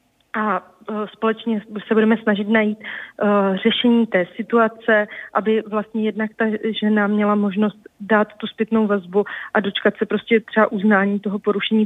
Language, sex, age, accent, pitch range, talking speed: Czech, female, 30-49, native, 205-230 Hz, 140 wpm